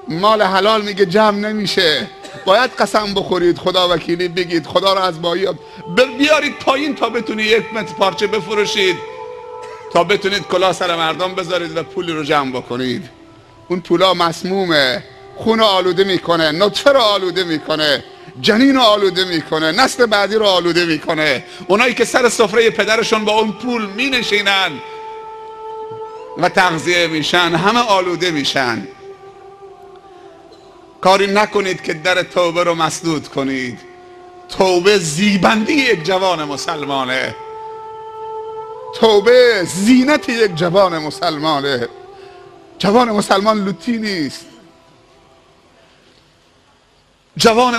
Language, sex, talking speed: English, male, 115 wpm